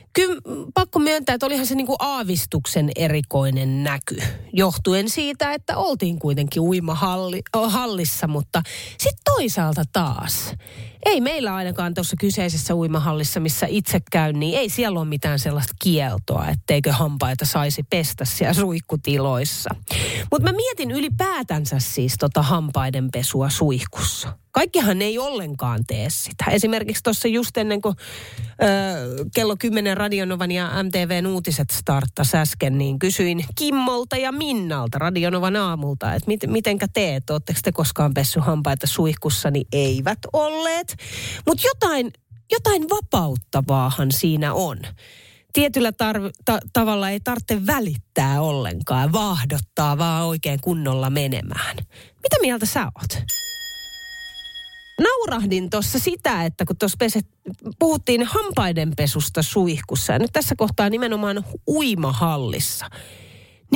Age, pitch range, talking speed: 30-49, 140-220 Hz, 115 wpm